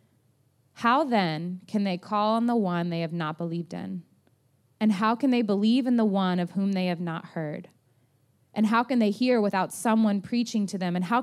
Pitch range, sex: 170-225 Hz, female